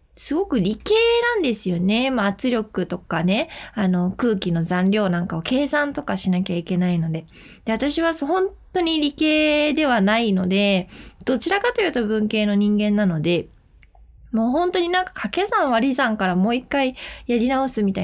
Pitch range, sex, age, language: 200-270 Hz, female, 20-39, Japanese